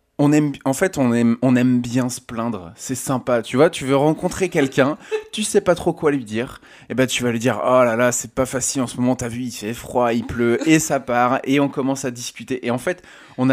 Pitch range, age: 120-145 Hz, 20-39